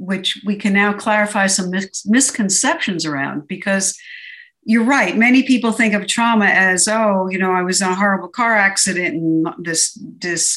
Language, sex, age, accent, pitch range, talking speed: English, female, 60-79, American, 185-235 Hz, 170 wpm